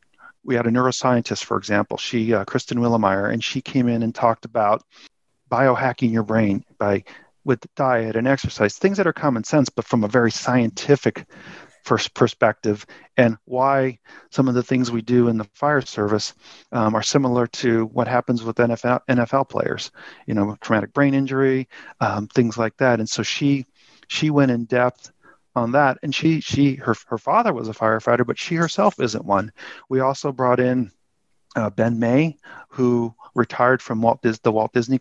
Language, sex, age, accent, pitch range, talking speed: English, male, 40-59, American, 115-135 Hz, 180 wpm